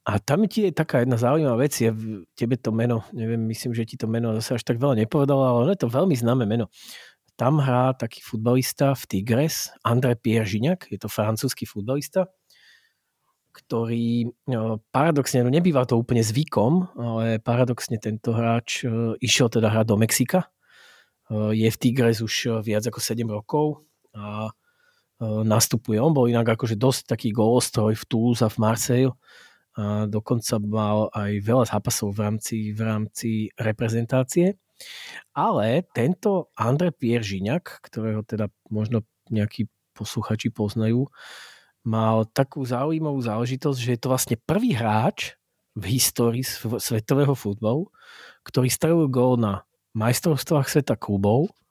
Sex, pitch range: male, 110-135 Hz